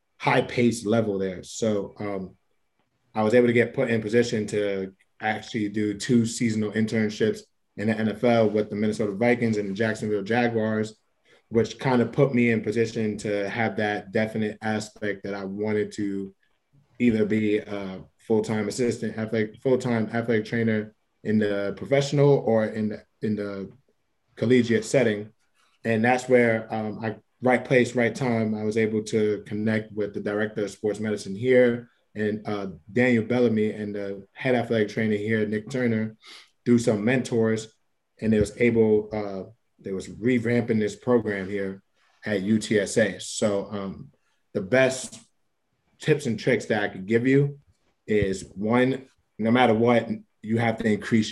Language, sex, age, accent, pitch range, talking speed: English, male, 20-39, American, 105-120 Hz, 155 wpm